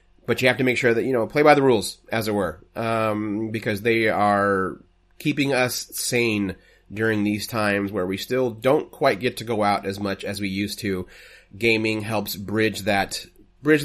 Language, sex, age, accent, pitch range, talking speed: English, male, 30-49, American, 100-130 Hz, 190 wpm